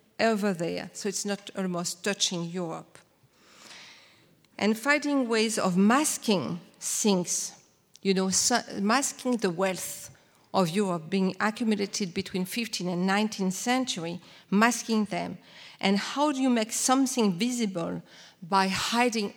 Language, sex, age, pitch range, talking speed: English, female, 50-69, 185-215 Hz, 120 wpm